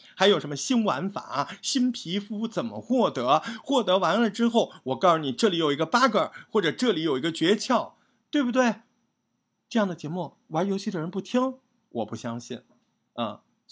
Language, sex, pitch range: Chinese, male, 145-225 Hz